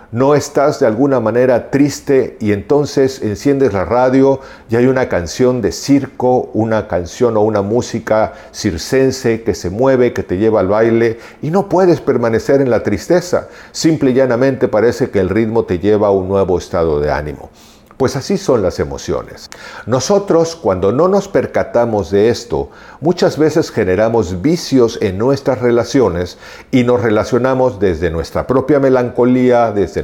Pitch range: 105-140 Hz